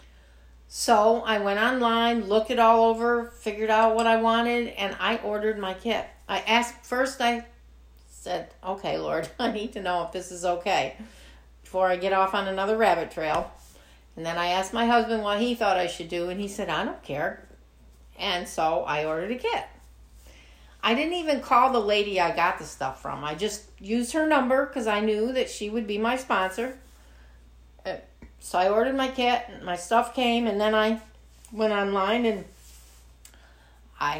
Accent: American